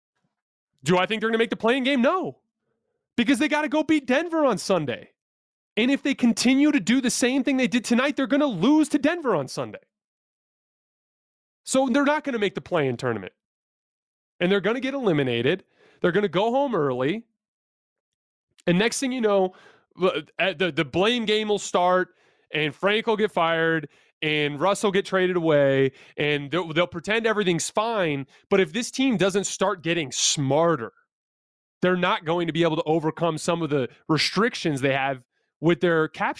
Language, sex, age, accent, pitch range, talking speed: English, male, 30-49, American, 160-230 Hz, 185 wpm